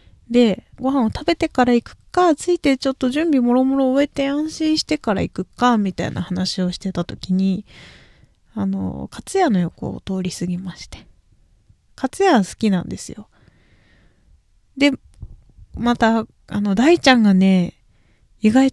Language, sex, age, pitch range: Japanese, female, 20-39, 185-275 Hz